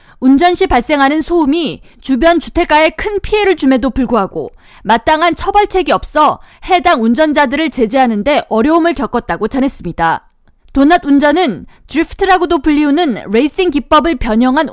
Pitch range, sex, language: 255-345 Hz, female, Korean